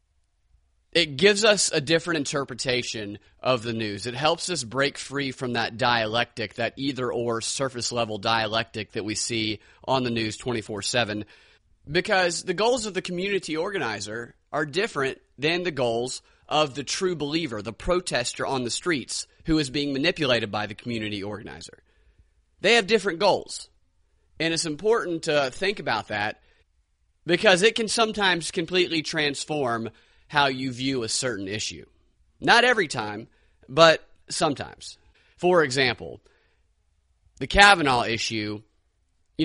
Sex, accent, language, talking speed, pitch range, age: male, American, English, 140 wpm, 110-155 Hz, 30-49